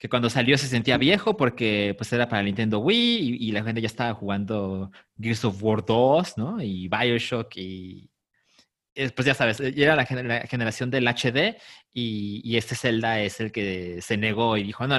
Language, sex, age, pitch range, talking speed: Spanish, male, 30-49, 115-160 Hz, 190 wpm